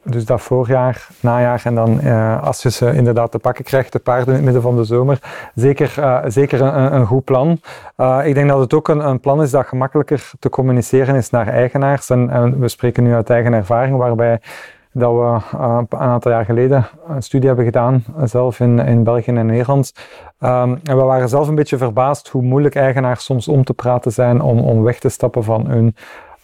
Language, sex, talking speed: Dutch, male, 215 wpm